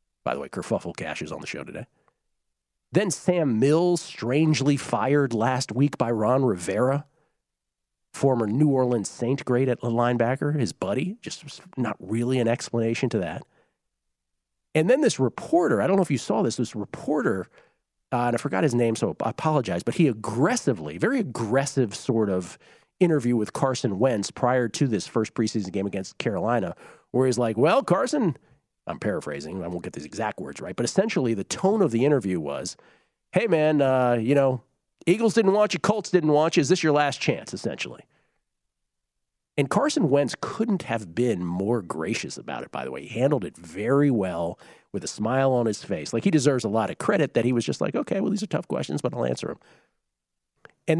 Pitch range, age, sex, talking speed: 110-145 Hz, 40-59, male, 195 wpm